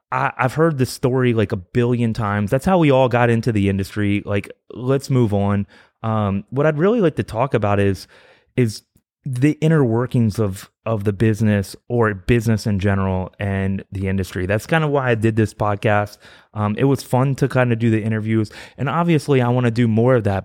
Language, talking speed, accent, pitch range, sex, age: English, 210 wpm, American, 105-145 Hz, male, 30-49